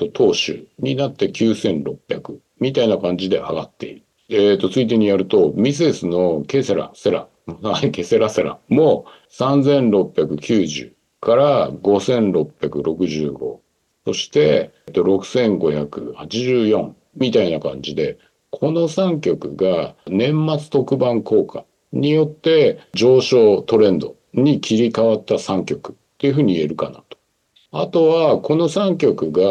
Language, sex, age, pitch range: Japanese, male, 50-69, 105-155 Hz